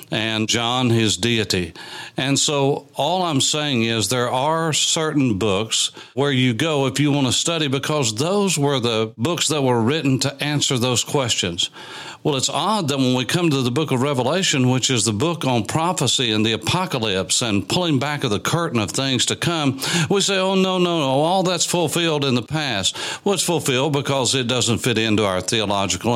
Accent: American